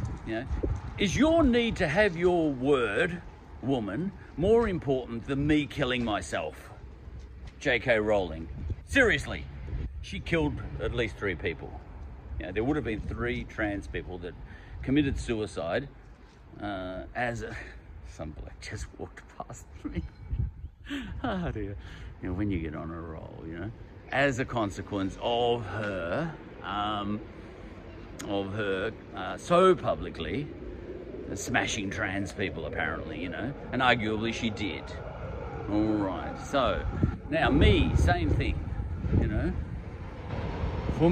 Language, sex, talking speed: English, male, 130 wpm